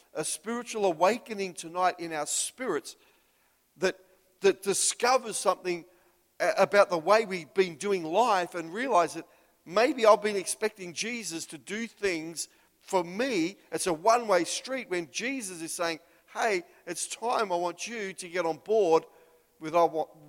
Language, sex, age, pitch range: English, male, 50-69, 150-195 Hz